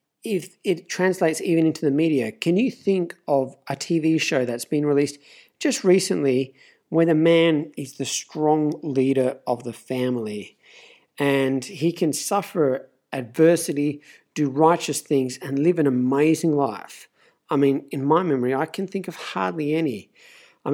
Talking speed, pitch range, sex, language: 155 wpm, 140-175 Hz, male, English